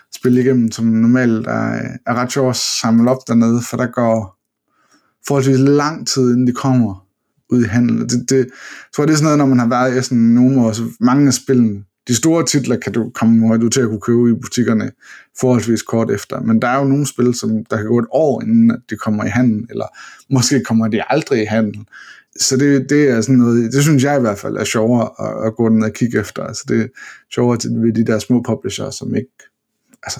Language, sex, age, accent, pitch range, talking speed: Danish, male, 20-39, native, 115-135 Hz, 235 wpm